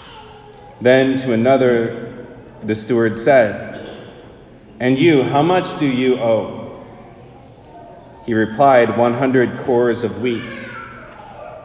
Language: English